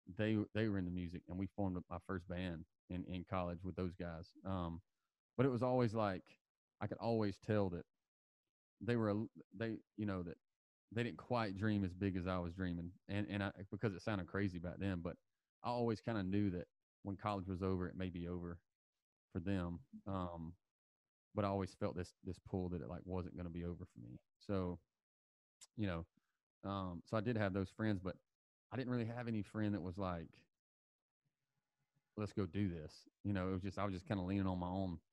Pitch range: 90-105 Hz